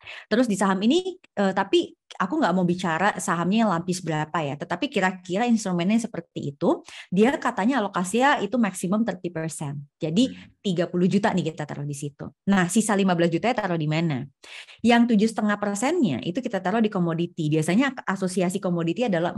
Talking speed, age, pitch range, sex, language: 165 wpm, 20-39, 175-240 Hz, female, Indonesian